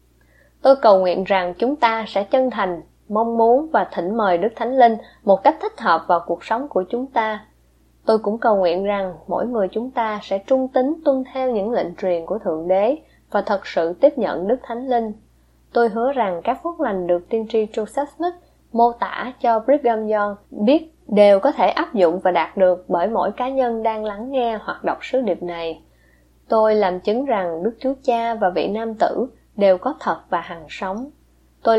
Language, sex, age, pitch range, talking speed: Vietnamese, female, 20-39, 180-240 Hz, 210 wpm